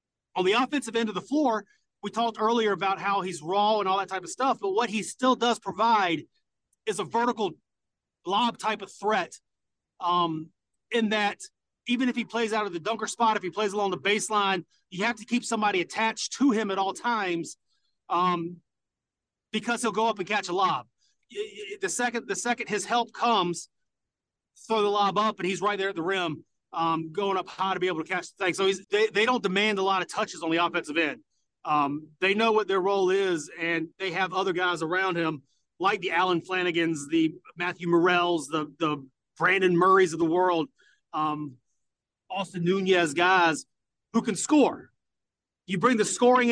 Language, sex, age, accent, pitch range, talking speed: English, male, 30-49, American, 175-220 Hz, 195 wpm